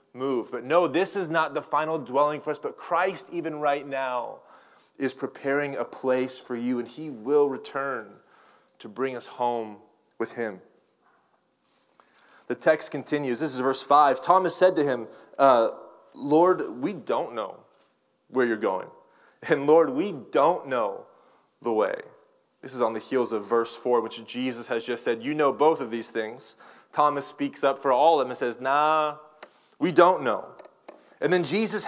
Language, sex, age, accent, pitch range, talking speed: English, male, 20-39, American, 140-195 Hz, 175 wpm